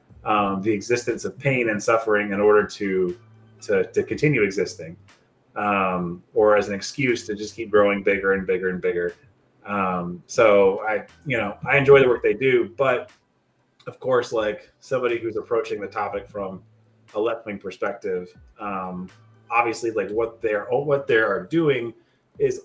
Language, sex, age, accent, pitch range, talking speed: English, male, 30-49, American, 100-160 Hz, 165 wpm